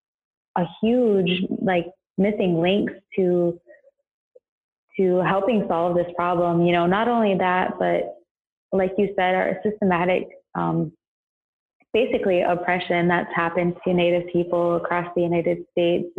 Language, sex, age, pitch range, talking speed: English, female, 20-39, 170-190 Hz, 125 wpm